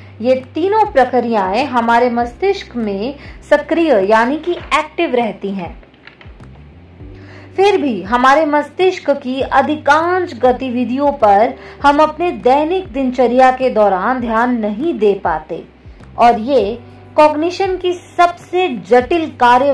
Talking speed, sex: 110 wpm, female